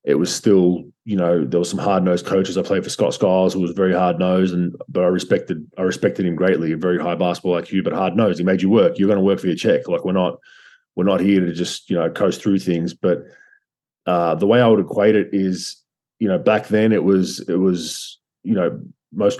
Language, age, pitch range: English, 20-39, 95-105 Hz